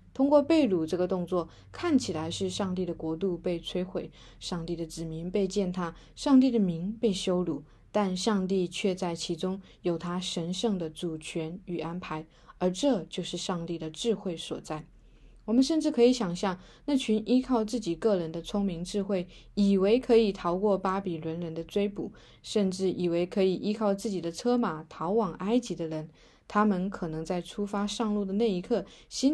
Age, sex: 20-39, female